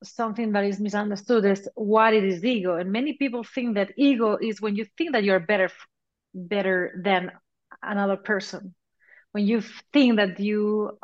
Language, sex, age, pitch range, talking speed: English, female, 30-49, 190-240 Hz, 170 wpm